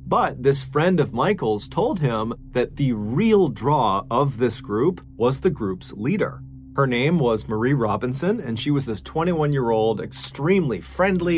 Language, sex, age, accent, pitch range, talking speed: English, male, 30-49, American, 115-165 Hz, 160 wpm